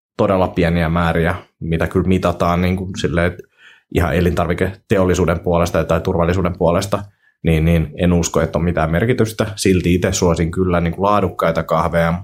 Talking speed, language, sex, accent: 160 wpm, Finnish, male, native